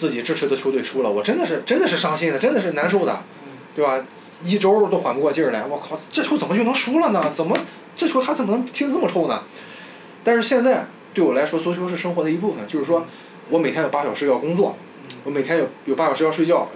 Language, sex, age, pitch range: Chinese, male, 20-39, 150-215 Hz